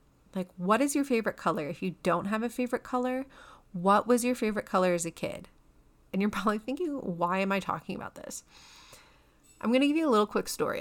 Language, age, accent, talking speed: English, 30-49, American, 220 wpm